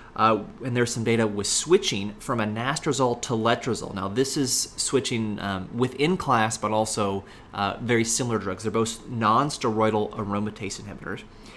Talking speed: 150 wpm